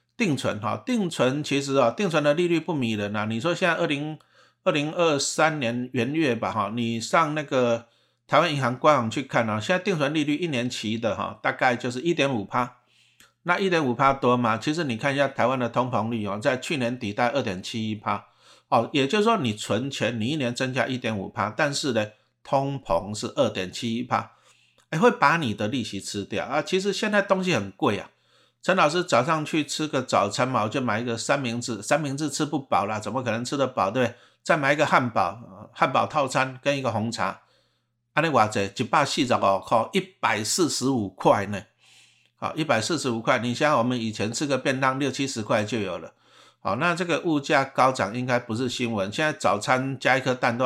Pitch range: 115-150 Hz